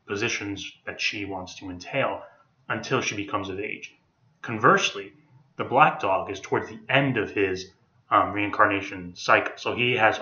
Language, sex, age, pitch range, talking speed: English, male, 30-49, 100-115 Hz, 160 wpm